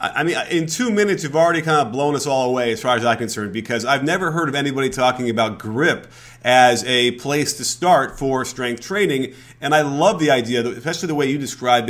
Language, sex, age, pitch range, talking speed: English, male, 30-49, 120-145 Hz, 225 wpm